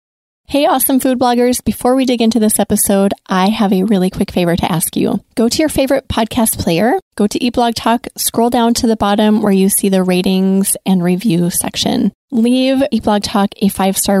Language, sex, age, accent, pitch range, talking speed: English, female, 20-39, American, 195-230 Hz, 205 wpm